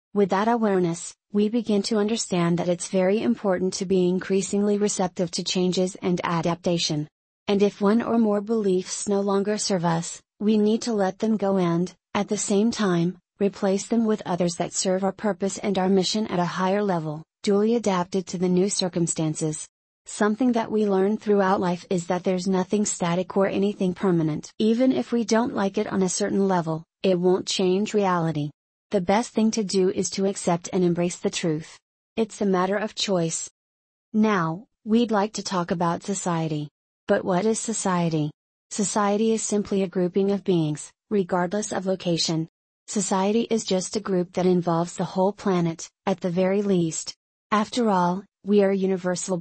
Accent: American